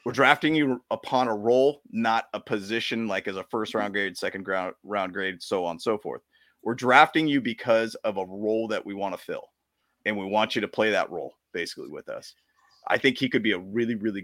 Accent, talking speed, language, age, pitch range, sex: American, 220 wpm, English, 30-49, 100-130 Hz, male